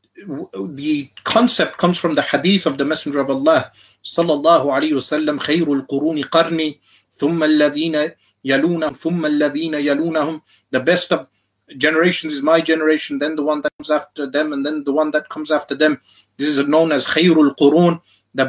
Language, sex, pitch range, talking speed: English, male, 130-170 Hz, 135 wpm